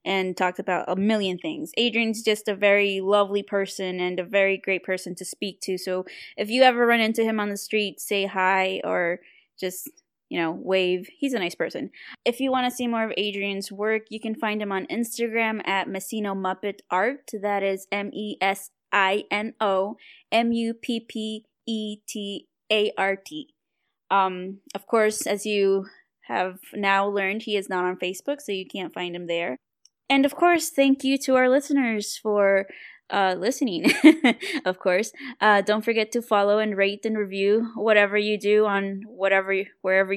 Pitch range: 190-225 Hz